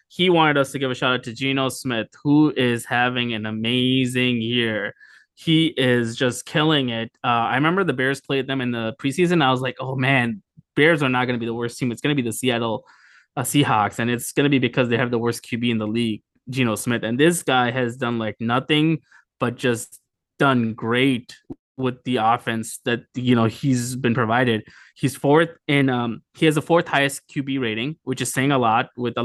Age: 20-39